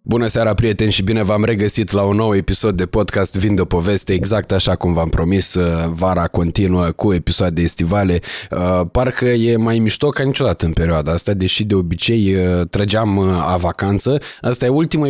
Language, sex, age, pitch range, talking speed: Romanian, male, 20-39, 90-115 Hz, 175 wpm